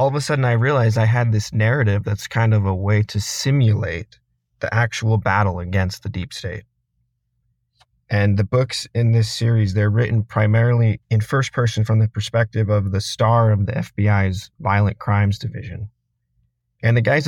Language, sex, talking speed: English, male, 175 wpm